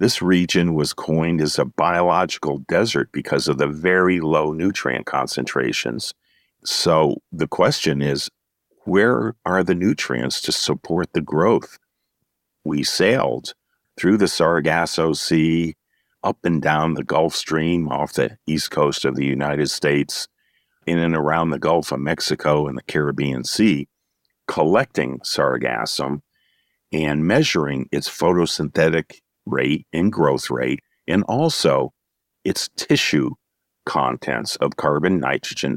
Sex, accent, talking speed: male, American, 130 wpm